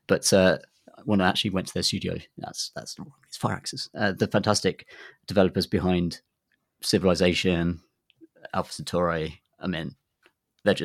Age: 30-49